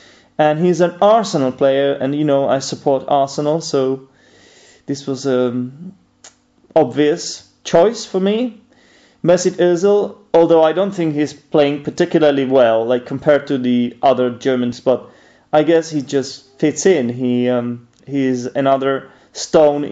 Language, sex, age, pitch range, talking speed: English, male, 30-49, 135-170 Hz, 145 wpm